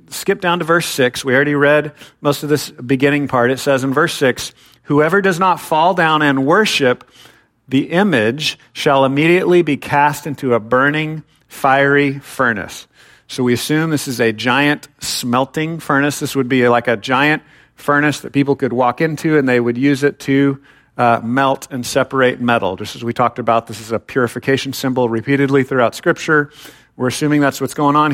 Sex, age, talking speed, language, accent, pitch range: male, 50-69, 185 wpm, English, American, 130-150 Hz